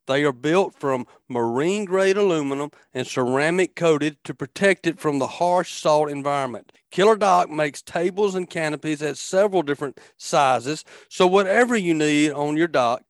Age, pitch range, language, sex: 40-59, 125-165 Hz, English, male